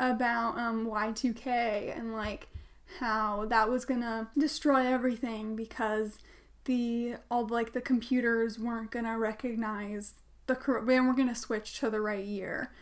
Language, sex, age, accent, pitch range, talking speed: English, female, 10-29, American, 220-255 Hz, 140 wpm